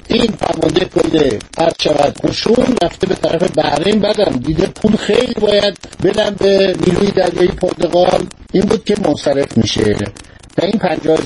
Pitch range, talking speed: 160-215 Hz, 100 wpm